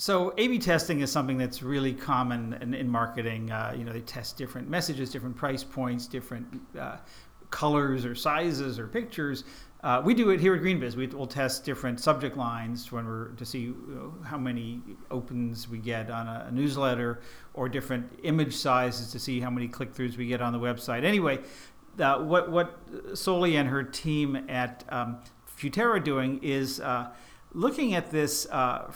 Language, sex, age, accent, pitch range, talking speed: English, male, 50-69, American, 125-150 Hz, 185 wpm